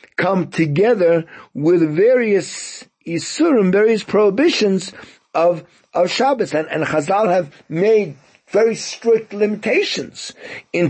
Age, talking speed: 60-79, 105 wpm